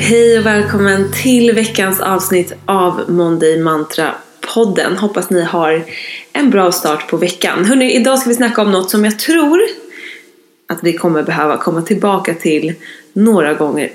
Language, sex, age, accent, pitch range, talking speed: English, female, 20-39, Swedish, 170-240 Hz, 150 wpm